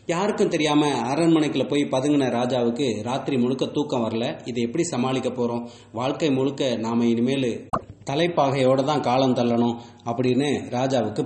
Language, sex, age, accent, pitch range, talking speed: English, male, 30-49, Indian, 120-145 Hz, 130 wpm